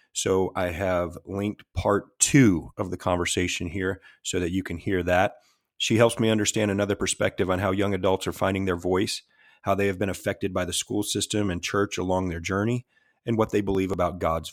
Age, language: 30-49, English